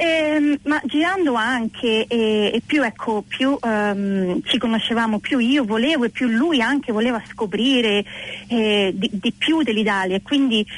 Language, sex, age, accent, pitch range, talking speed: Italian, female, 30-49, native, 215-260 Hz, 150 wpm